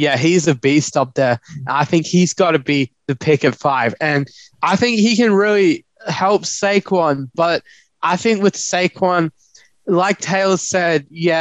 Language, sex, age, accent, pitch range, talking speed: English, male, 20-39, Australian, 145-185 Hz, 175 wpm